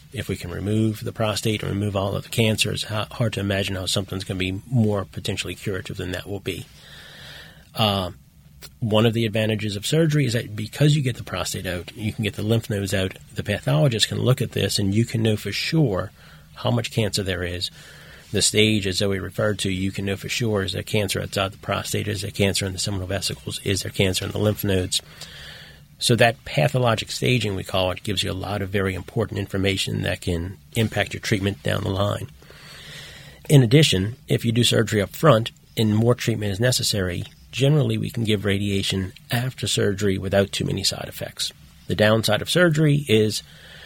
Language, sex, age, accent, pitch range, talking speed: English, male, 40-59, American, 100-120 Hz, 210 wpm